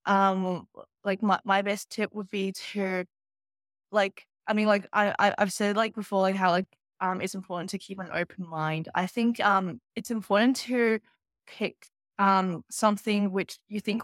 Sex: female